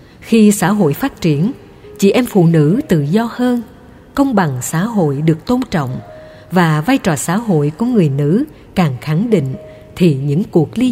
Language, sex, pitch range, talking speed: Vietnamese, female, 145-215 Hz, 185 wpm